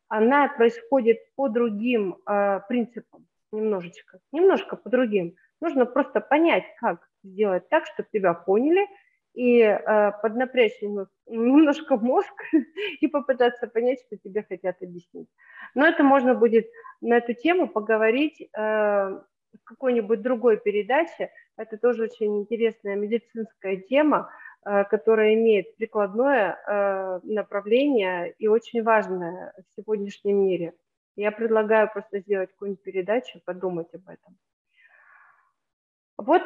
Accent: native